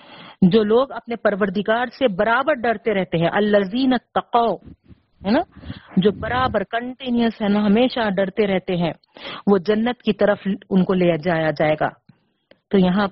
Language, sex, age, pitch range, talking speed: Urdu, female, 40-59, 200-260 Hz, 160 wpm